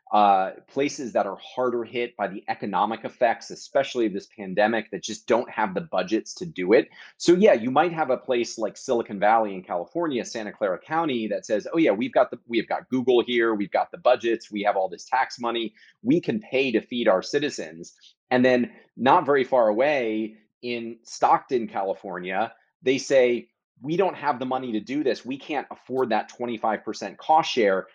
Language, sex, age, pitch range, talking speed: English, male, 30-49, 105-125 Hz, 195 wpm